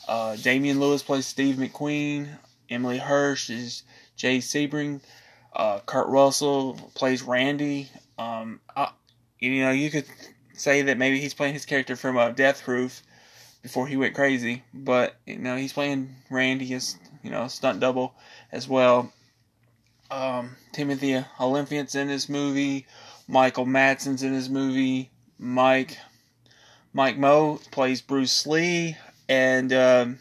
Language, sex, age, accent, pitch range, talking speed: English, male, 20-39, American, 125-140 Hz, 135 wpm